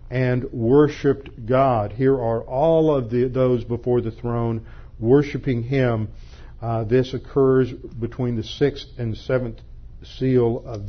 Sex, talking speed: male, 130 wpm